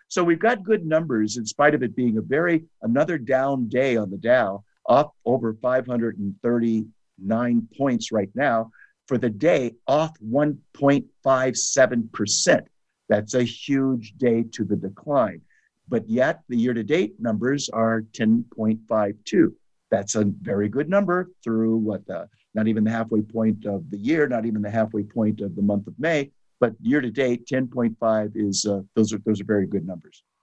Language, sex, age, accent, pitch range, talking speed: English, male, 50-69, American, 105-130 Hz, 165 wpm